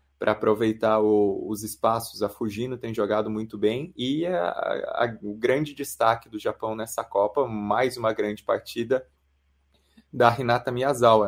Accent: Brazilian